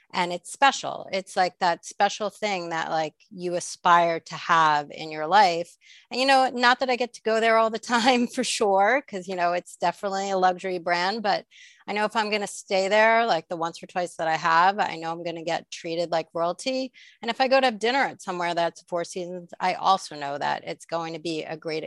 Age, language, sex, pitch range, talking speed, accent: 30-49, English, female, 170-215 Hz, 240 wpm, American